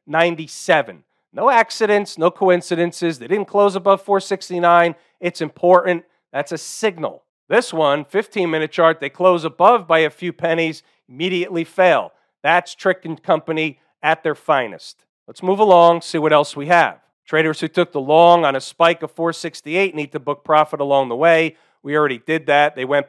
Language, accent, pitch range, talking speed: English, American, 155-195 Hz, 170 wpm